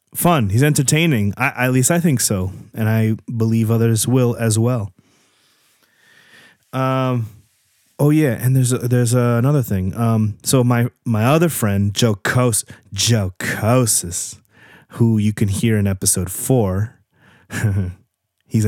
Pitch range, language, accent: 105-125 Hz, English, American